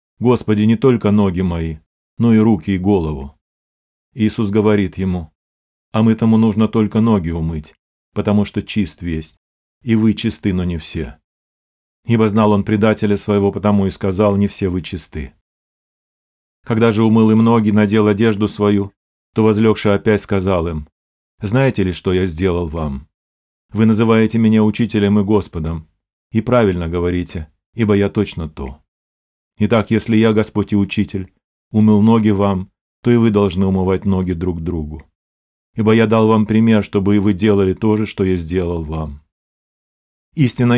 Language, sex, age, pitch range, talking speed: Russian, male, 40-59, 80-110 Hz, 155 wpm